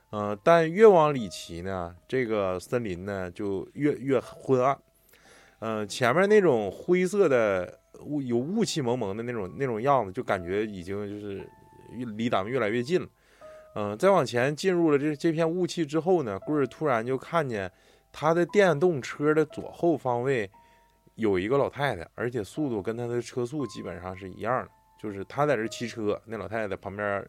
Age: 20-39